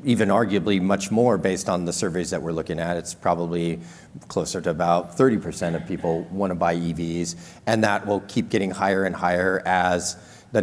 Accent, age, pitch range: American, 40-59, 90-115 Hz